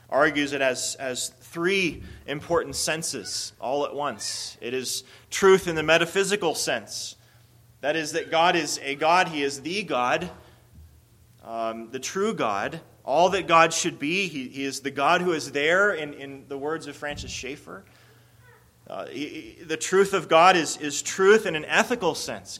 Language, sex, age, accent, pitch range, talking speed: English, male, 30-49, American, 120-175 Hz, 175 wpm